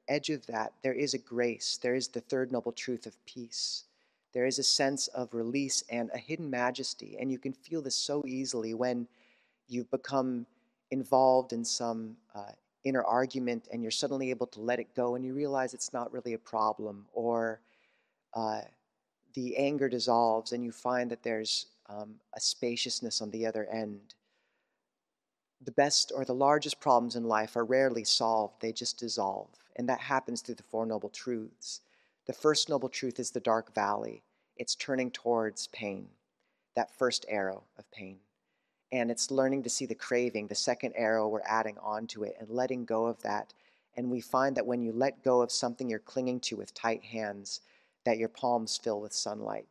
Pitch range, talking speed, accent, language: 110-130 Hz, 190 wpm, American, English